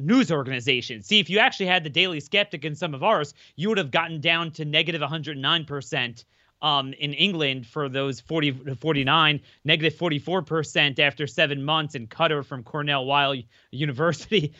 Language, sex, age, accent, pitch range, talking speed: English, male, 30-49, American, 140-185 Hz, 165 wpm